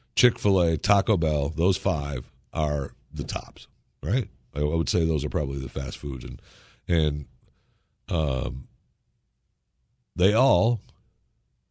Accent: American